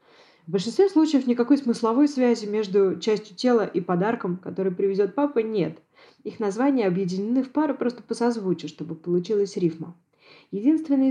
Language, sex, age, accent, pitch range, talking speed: Russian, female, 20-39, native, 185-270 Hz, 145 wpm